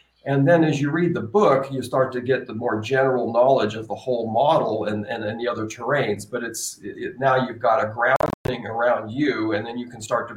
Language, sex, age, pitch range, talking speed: English, male, 40-59, 120-145 Hz, 235 wpm